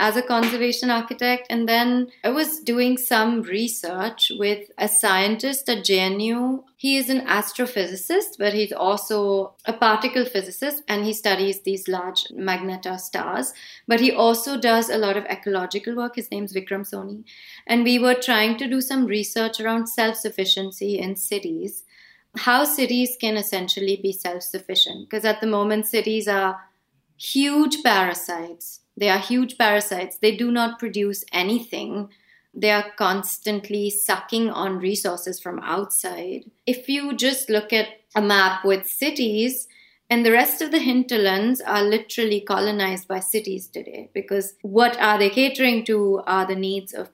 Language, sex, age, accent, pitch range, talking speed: English, female, 30-49, Indian, 195-240 Hz, 155 wpm